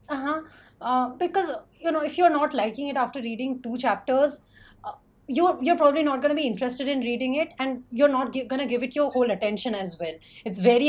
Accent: native